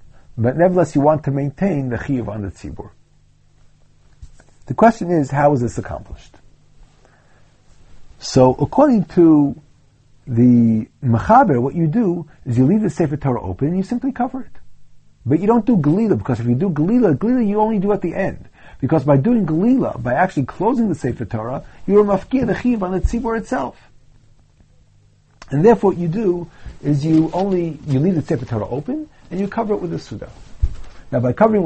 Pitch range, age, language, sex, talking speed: 120-185 Hz, 50-69, English, male, 185 wpm